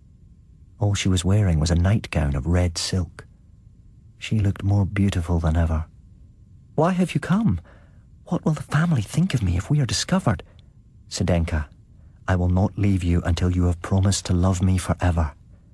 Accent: British